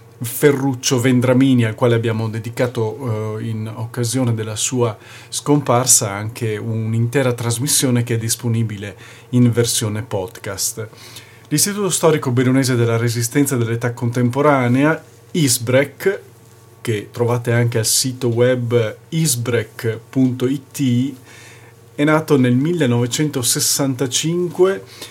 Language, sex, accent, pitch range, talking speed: Italian, male, native, 115-135 Hz, 95 wpm